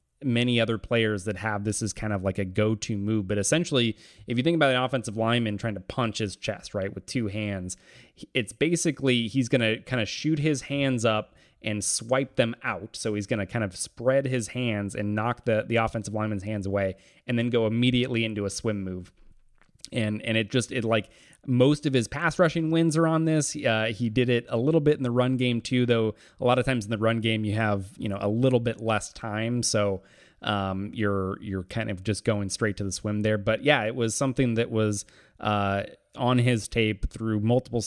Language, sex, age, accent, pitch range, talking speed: English, male, 20-39, American, 105-125 Hz, 225 wpm